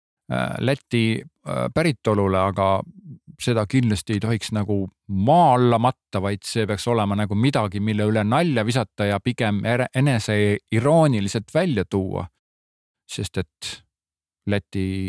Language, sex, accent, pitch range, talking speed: Czech, male, Finnish, 100-120 Hz, 115 wpm